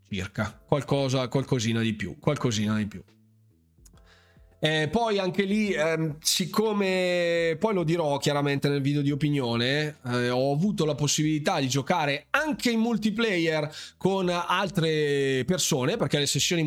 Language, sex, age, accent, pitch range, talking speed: Italian, male, 20-39, native, 140-195 Hz, 135 wpm